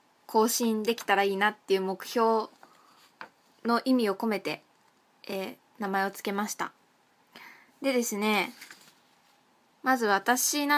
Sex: female